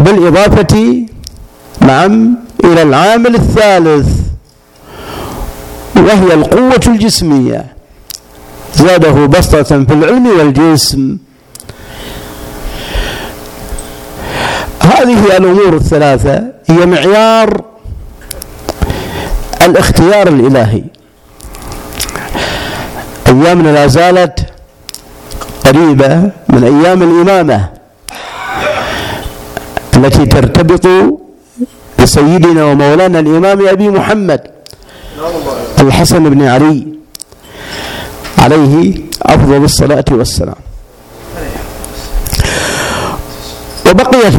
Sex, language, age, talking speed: male, Arabic, 50-69, 55 wpm